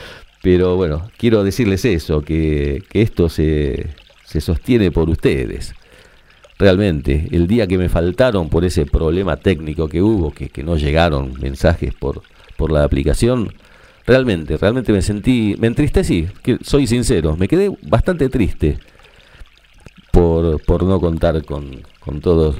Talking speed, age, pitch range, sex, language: 145 wpm, 50-69, 80-105 Hz, male, Spanish